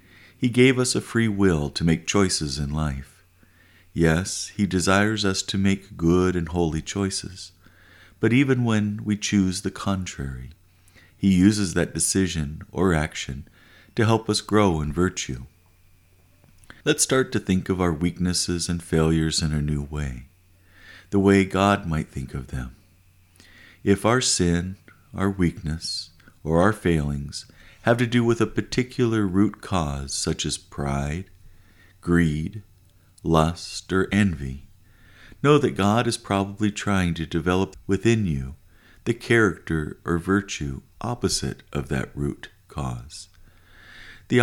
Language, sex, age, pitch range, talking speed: English, male, 50-69, 80-100 Hz, 140 wpm